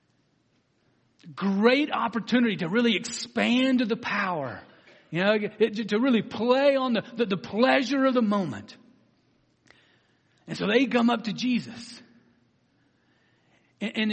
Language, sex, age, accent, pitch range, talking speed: English, male, 50-69, American, 175-265 Hz, 115 wpm